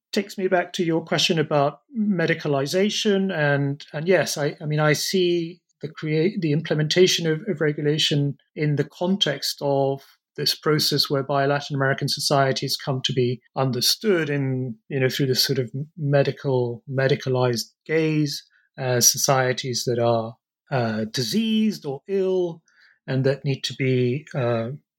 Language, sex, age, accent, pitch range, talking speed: English, male, 30-49, British, 130-160 Hz, 150 wpm